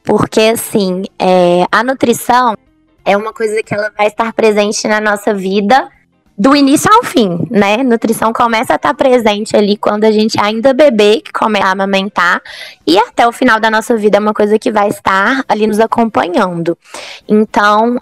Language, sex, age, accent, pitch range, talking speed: Portuguese, female, 20-39, Brazilian, 210-255 Hz, 175 wpm